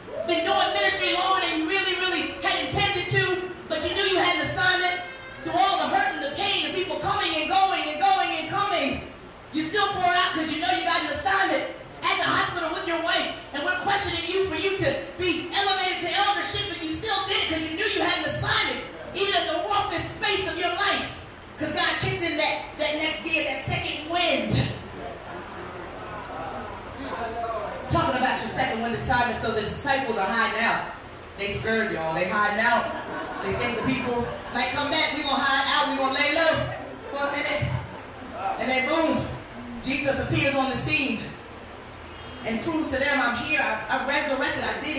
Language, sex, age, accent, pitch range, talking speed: English, female, 30-49, American, 275-365 Hz, 195 wpm